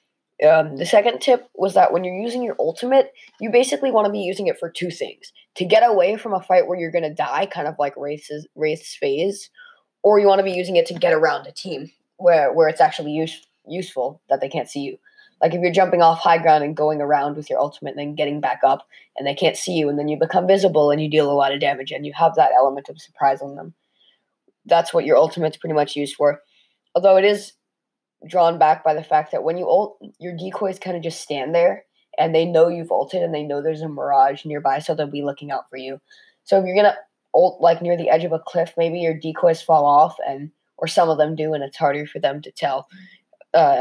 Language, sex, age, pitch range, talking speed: English, female, 20-39, 150-195 Hz, 250 wpm